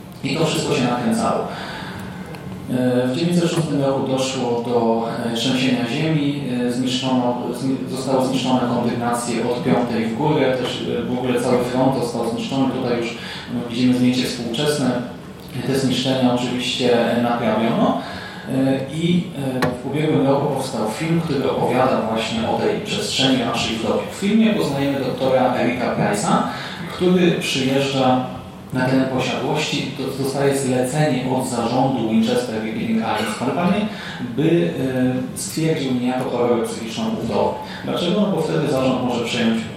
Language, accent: Polish, native